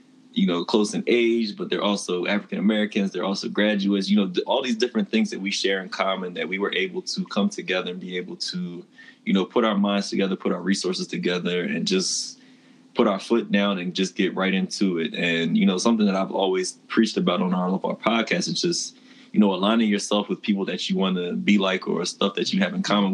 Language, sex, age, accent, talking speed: English, male, 20-39, American, 240 wpm